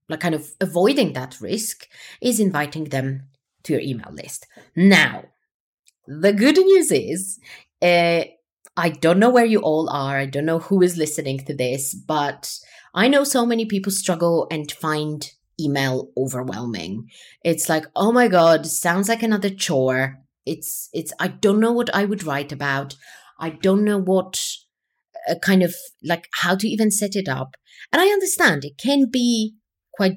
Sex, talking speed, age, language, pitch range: female, 170 wpm, 30-49, English, 150-215 Hz